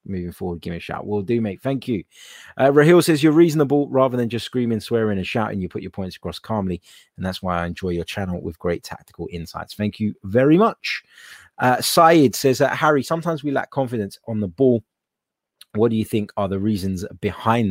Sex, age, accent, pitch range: male, 30-49, British, 95-125 Hz